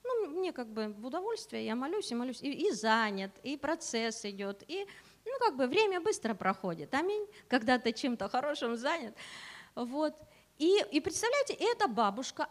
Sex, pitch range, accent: female, 235-345 Hz, native